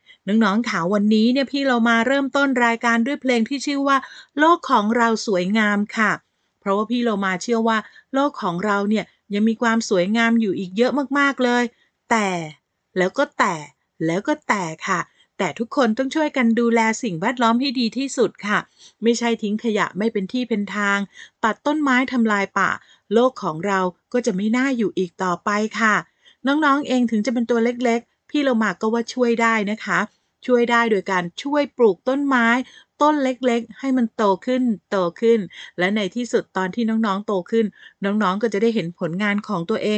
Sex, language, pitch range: female, Thai, 205-255 Hz